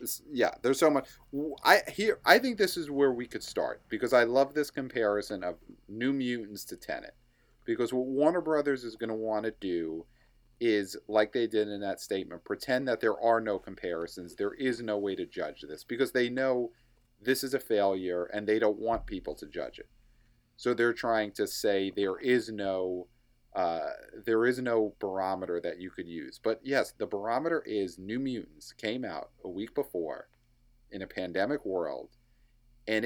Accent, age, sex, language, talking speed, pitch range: American, 40-59, male, English, 185 wpm, 100-130 Hz